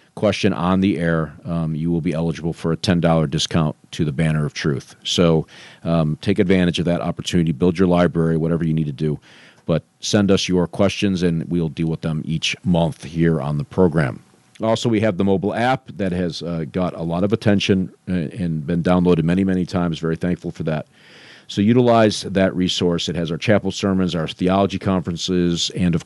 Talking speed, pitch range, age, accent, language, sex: 205 wpm, 80-100 Hz, 40-59, American, English, male